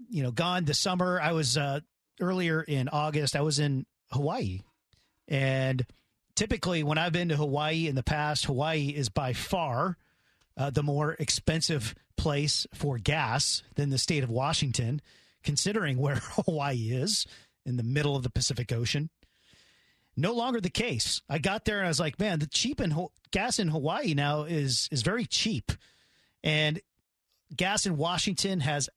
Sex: male